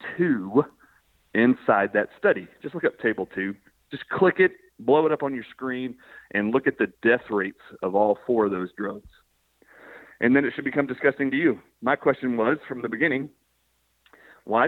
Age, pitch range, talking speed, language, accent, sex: 40-59, 105-150 Hz, 185 wpm, English, American, male